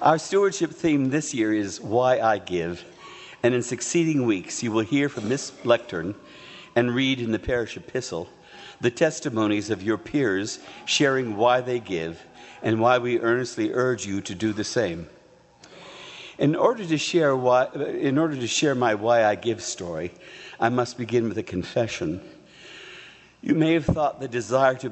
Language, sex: English, male